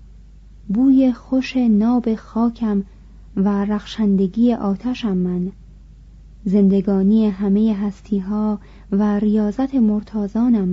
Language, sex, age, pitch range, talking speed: Persian, female, 30-49, 190-225 Hz, 80 wpm